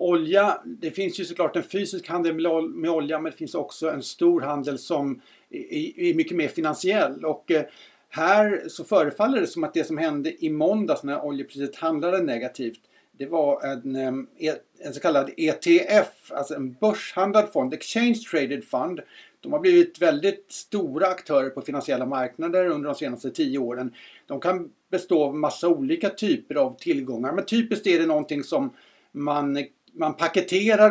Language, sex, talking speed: Swedish, male, 165 wpm